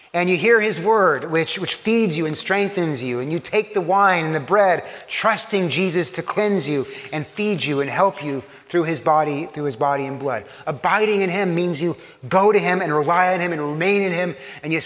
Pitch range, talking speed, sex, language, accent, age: 130-175 Hz, 230 wpm, male, English, American, 30-49